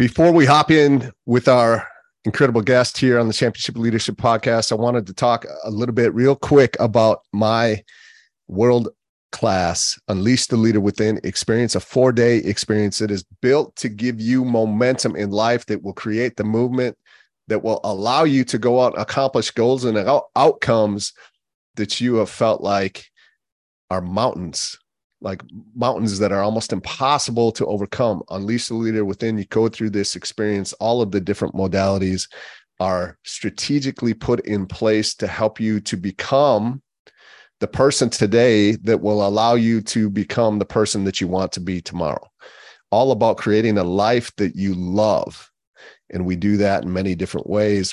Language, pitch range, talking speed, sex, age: English, 95-120 Hz, 165 wpm, male, 30-49